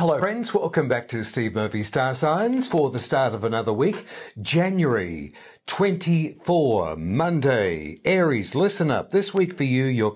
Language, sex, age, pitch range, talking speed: English, male, 50-69, 115-175 Hz, 155 wpm